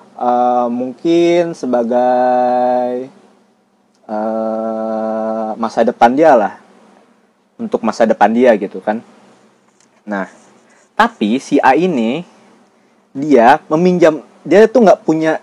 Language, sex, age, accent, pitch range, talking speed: Indonesian, male, 20-39, native, 120-195 Hz, 100 wpm